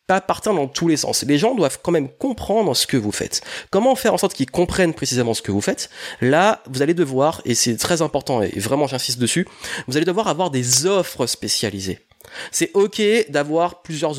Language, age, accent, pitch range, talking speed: French, 30-49, French, 130-175 Hz, 205 wpm